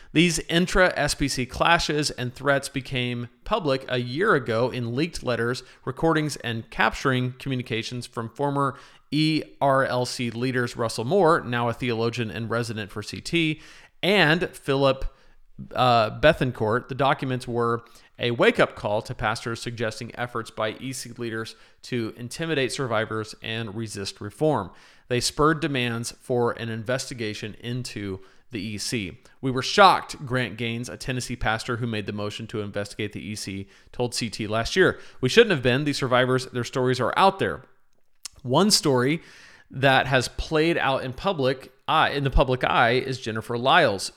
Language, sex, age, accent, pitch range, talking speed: English, male, 40-59, American, 115-140 Hz, 150 wpm